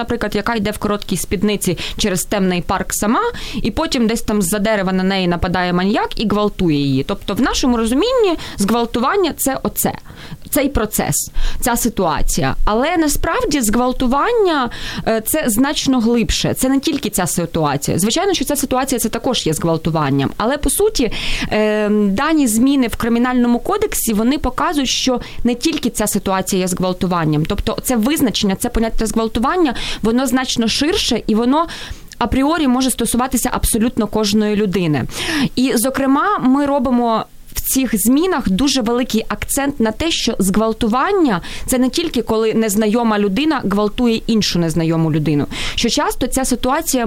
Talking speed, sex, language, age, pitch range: 145 wpm, female, Ukrainian, 20-39, 200-260 Hz